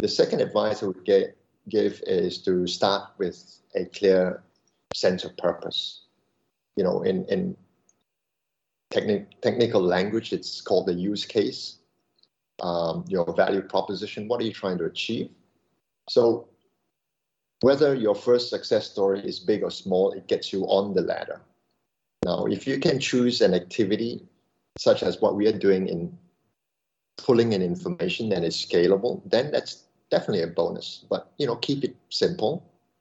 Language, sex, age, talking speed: English, male, 50-69, 150 wpm